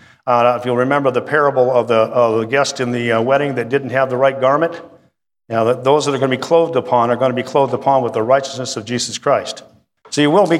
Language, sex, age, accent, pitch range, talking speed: English, male, 50-69, American, 125-150 Hz, 265 wpm